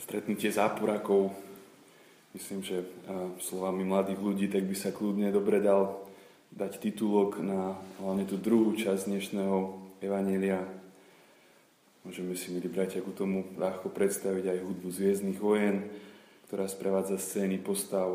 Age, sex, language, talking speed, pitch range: 20-39, male, Slovak, 130 wpm, 95-105 Hz